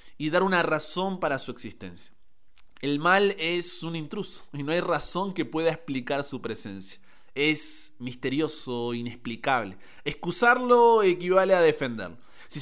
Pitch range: 125-175 Hz